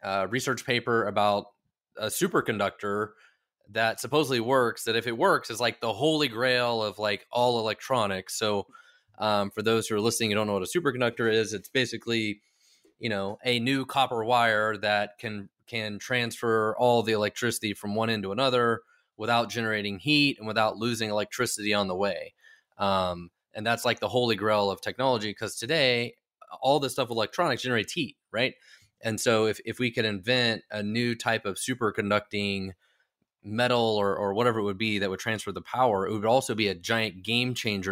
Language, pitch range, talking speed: English, 105-120 Hz, 185 wpm